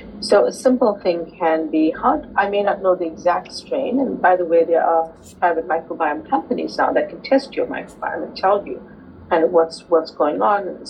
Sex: female